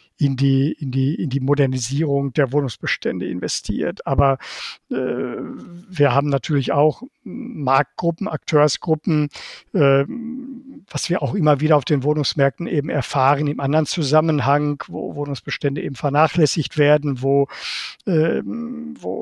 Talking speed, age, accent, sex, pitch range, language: 110 wpm, 50-69, German, male, 140-160 Hz, German